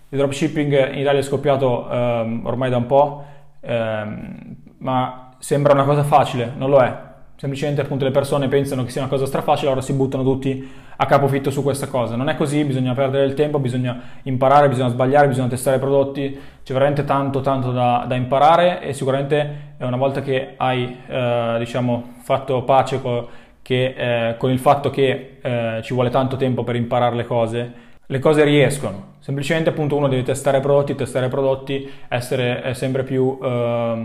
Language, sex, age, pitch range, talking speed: Italian, male, 20-39, 125-140 Hz, 180 wpm